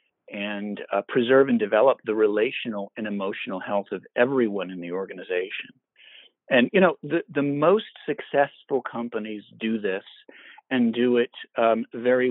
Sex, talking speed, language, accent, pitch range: male, 145 wpm, English, American, 105-140 Hz